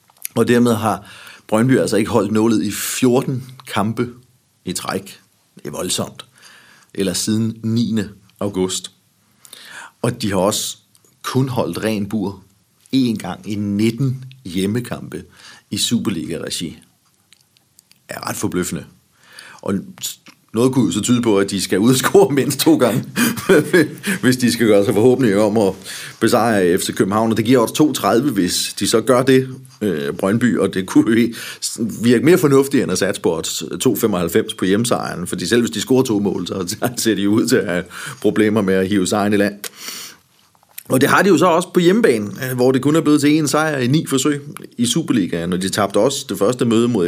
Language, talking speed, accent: Danish, 180 wpm, native